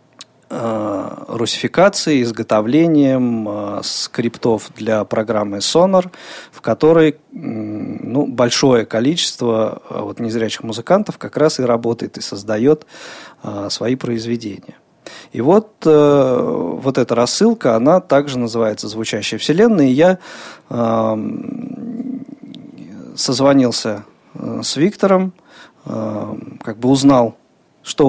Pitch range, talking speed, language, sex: 115-155 Hz, 85 wpm, Russian, male